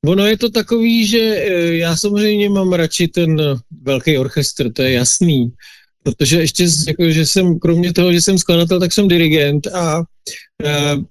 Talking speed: 160 wpm